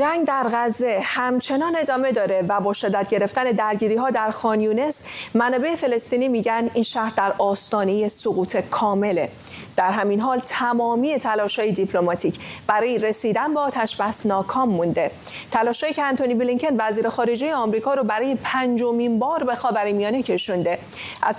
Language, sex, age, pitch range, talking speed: English, female, 40-59, 205-255 Hz, 145 wpm